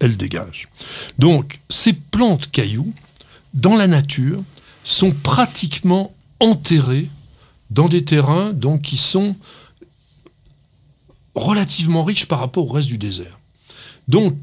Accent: French